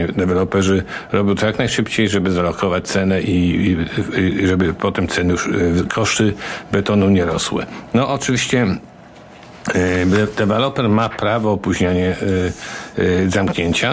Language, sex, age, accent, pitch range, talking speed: Polish, male, 50-69, native, 90-105 Hz, 125 wpm